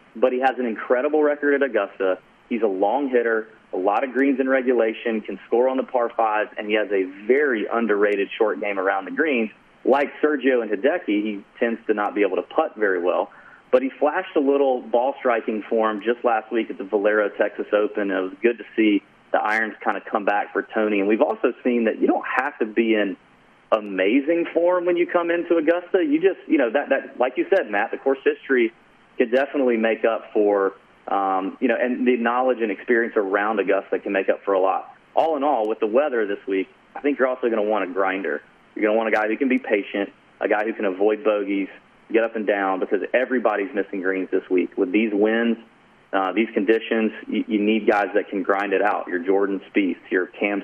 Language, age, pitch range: English, 30-49, 105-130 Hz